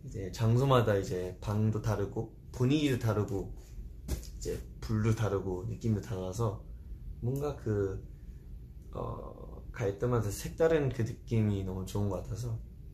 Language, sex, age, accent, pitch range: Korean, male, 30-49, native, 100-130 Hz